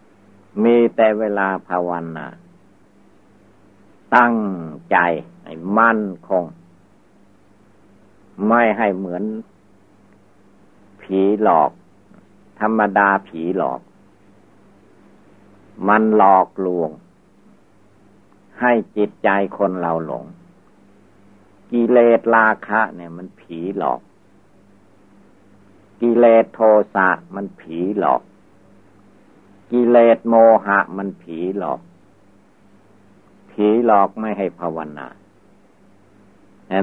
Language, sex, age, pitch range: Thai, male, 60-79, 95-105 Hz